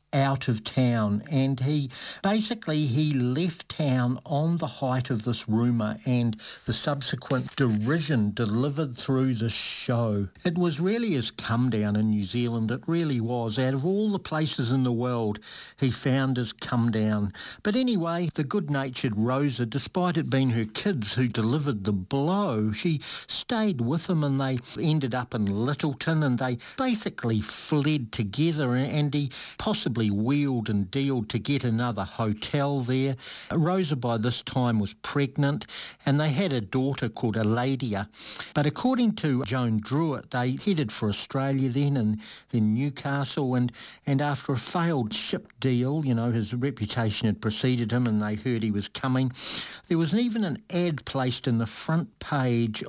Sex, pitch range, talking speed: male, 115-145 Hz, 165 wpm